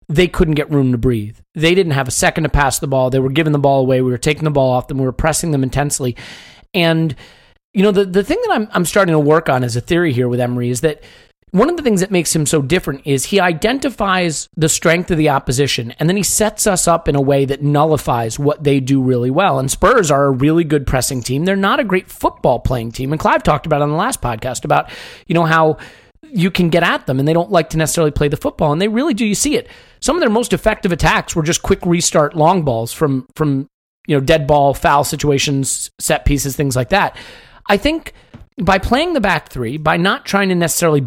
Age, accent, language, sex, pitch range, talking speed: 30-49, American, English, male, 140-190 Hz, 250 wpm